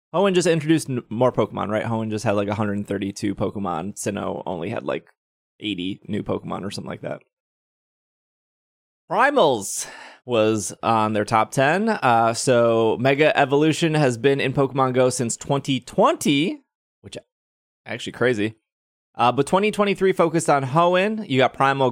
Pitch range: 110-145 Hz